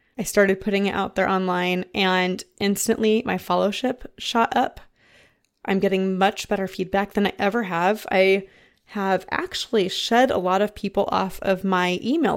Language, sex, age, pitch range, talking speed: English, female, 20-39, 190-230 Hz, 165 wpm